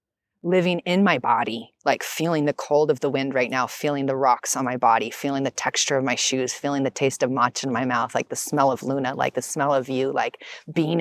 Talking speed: 245 wpm